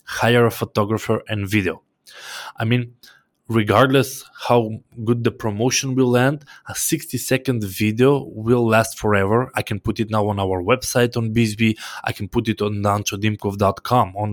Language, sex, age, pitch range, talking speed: English, male, 20-39, 105-125 Hz, 155 wpm